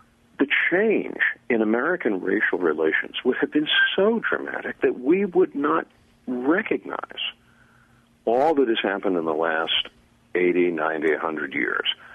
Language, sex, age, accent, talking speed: English, male, 50-69, American, 135 wpm